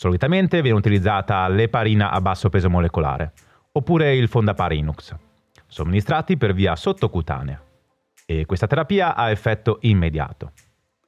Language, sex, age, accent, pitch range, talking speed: Italian, male, 30-49, native, 90-130 Hz, 115 wpm